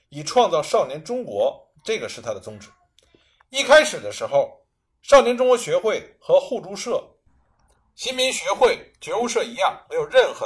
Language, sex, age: Chinese, male, 50-69